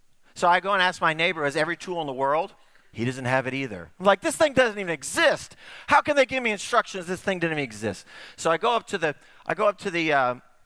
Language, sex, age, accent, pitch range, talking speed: English, male, 40-59, American, 155-235 Hz, 275 wpm